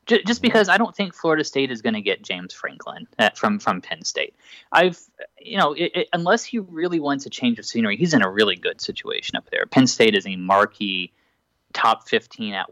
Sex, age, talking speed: male, 30-49, 215 wpm